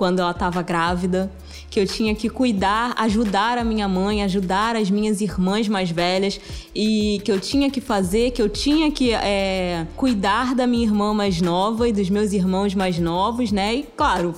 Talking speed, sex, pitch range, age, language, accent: 185 wpm, female, 195-260 Hz, 20-39, Portuguese, Brazilian